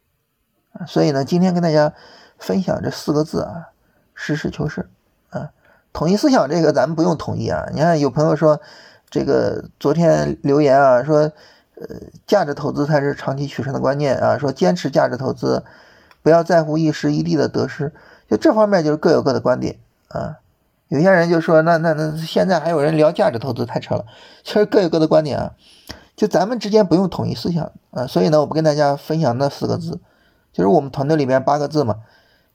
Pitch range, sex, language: 130-165 Hz, male, Chinese